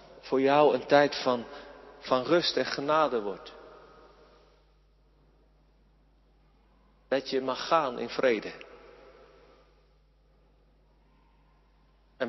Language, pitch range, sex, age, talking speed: Dutch, 130-150 Hz, male, 50-69, 85 wpm